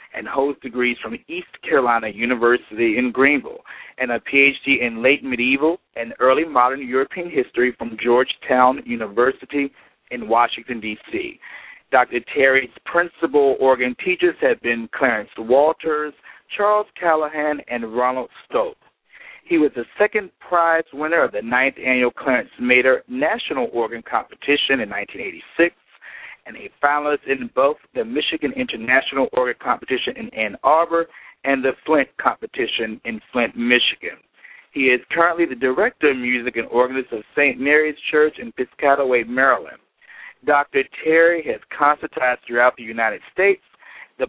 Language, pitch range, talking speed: English, 120-160 Hz, 140 wpm